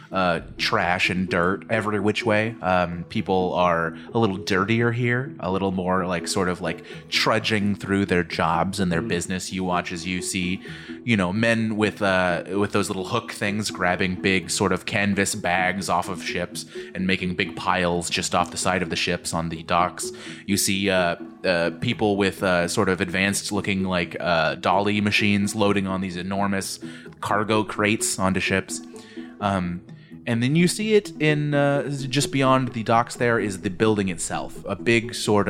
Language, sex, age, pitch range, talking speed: English, male, 20-39, 90-115 Hz, 185 wpm